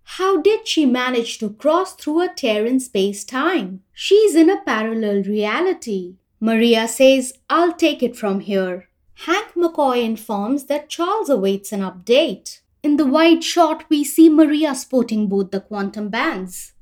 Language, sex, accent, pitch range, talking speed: English, female, Indian, 205-340 Hz, 155 wpm